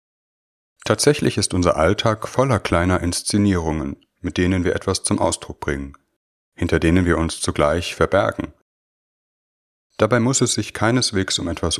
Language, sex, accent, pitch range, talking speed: German, male, German, 80-105 Hz, 135 wpm